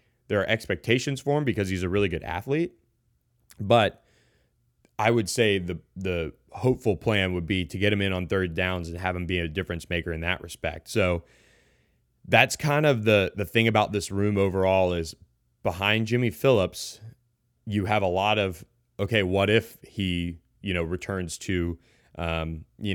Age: 30-49